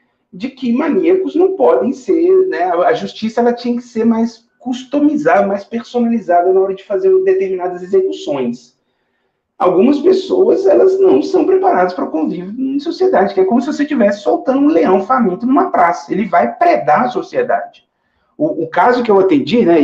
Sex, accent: male, Brazilian